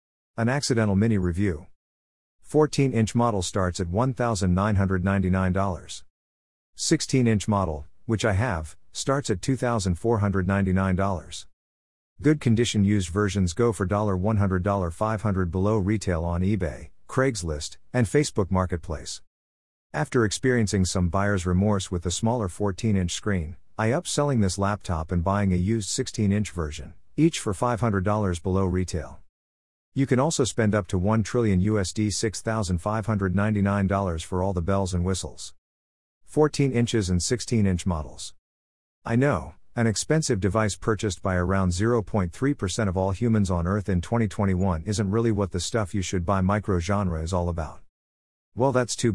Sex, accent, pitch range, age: male, American, 90-110 Hz, 50-69